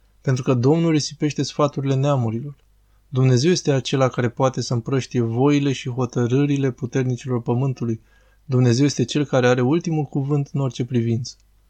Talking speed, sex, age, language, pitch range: 145 wpm, male, 20-39, Romanian, 120-140 Hz